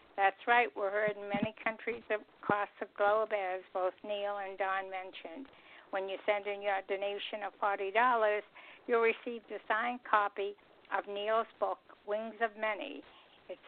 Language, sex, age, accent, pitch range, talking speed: English, female, 60-79, American, 200-230 Hz, 160 wpm